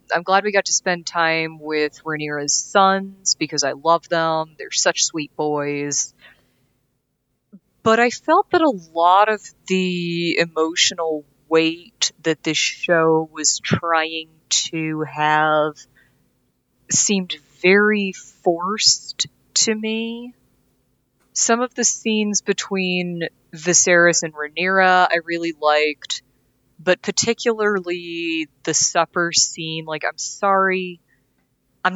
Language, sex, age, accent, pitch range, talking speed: English, female, 30-49, American, 150-180 Hz, 115 wpm